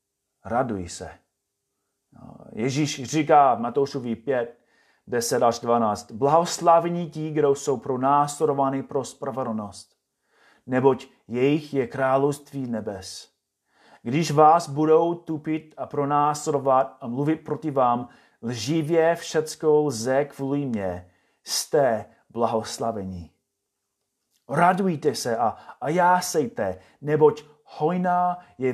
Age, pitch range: 30-49, 120-155 Hz